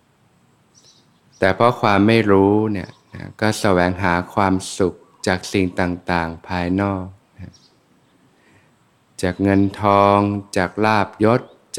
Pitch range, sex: 90-105 Hz, male